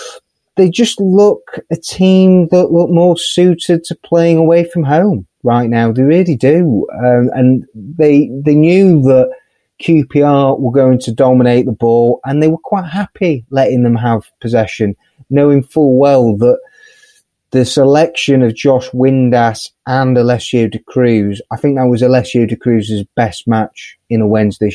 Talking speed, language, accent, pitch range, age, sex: 160 wpm, English, British, 115-140 Hz, 30-49, male